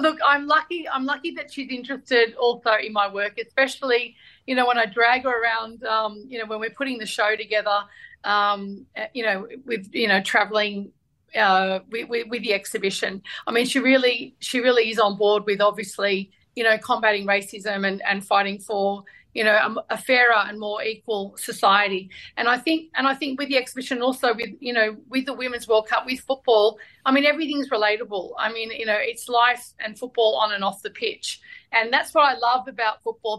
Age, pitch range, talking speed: 30-49, 215-255 Hz, 205 wpm